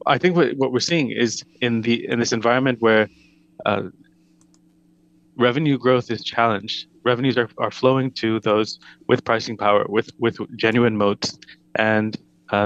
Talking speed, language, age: 150 wpm, English, 20-39